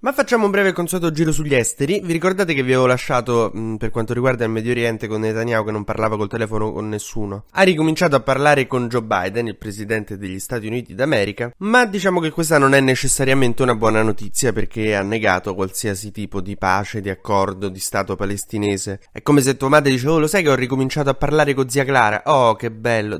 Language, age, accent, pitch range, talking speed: Italian, 20-39, native, 105-140 Hz, 215 wpm